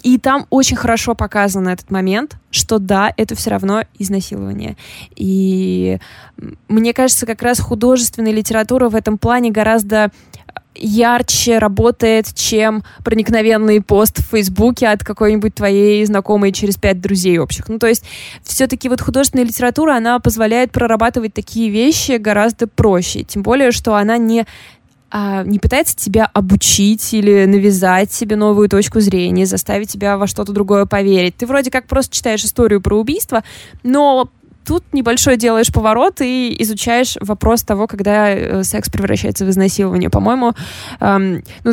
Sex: female